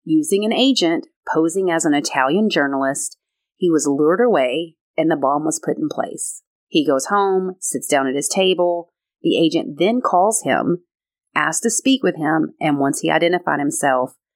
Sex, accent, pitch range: female, American, 150-195 Hz